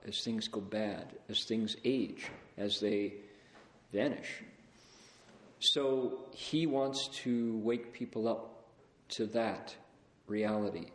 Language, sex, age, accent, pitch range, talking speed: English, male, 50-69, American, 105-120 Hz, 110 wpm